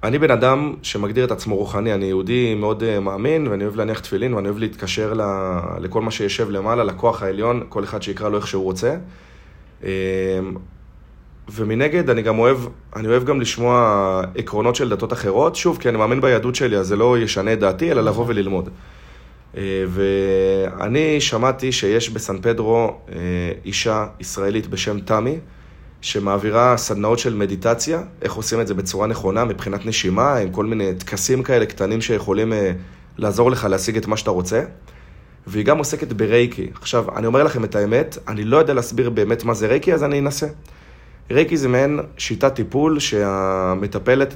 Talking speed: 160 wpm